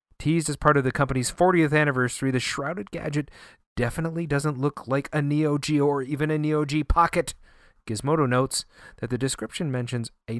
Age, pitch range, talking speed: 30-49, 100-145 Hz, 175 wpm